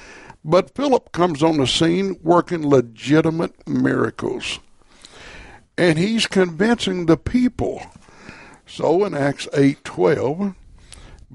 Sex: male